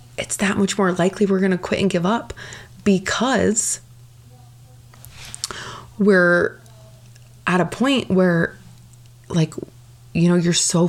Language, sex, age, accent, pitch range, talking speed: English, female, 20-39, American, 135-180 Hz, 125 wpm